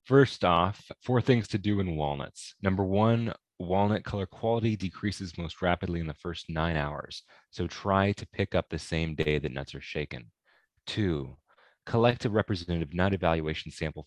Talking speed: 170 wpm